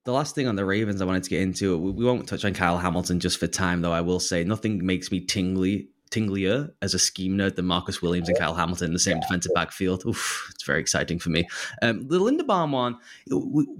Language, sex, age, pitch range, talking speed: English, male, 20-39, 95-135 Hz, 240 wpm